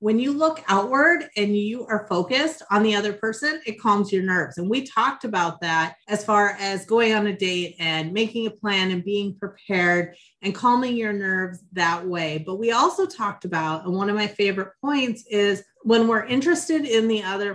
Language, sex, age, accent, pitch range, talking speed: English, female, 30-49, American, 185-220 Hz, 200 wpm